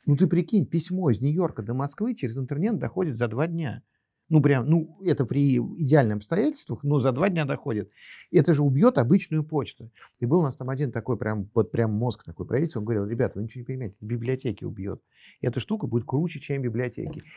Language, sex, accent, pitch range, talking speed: Russian, male, native, 120-165 Hz, 205 wpm